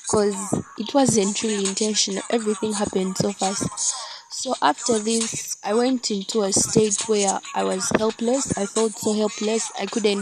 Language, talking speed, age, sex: English, 155 wpm, 10-29, female